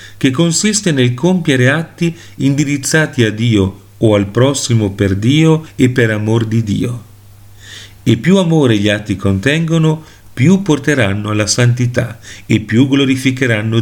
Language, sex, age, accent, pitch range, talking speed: Italian, male, 40-59, native, 105-140 Hz, 135 wpm